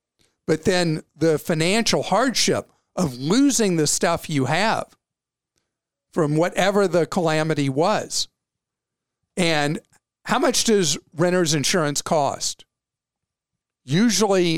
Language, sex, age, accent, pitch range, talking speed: English, male, 50-69, American, 150-200 Hz, 100 wpm